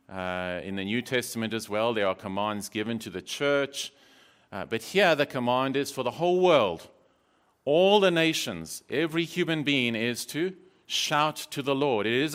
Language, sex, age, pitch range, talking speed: English, male, 40-59, 105-140 Hz, 185 wpm